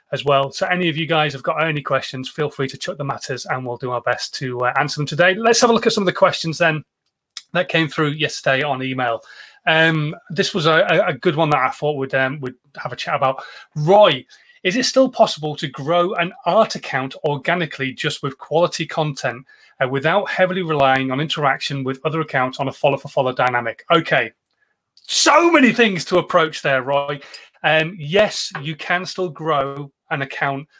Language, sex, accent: English, male, British